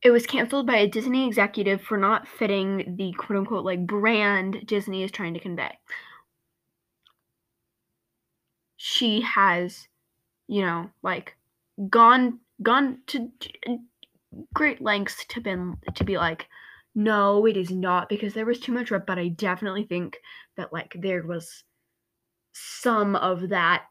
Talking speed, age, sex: 140 wpm, 10-29, female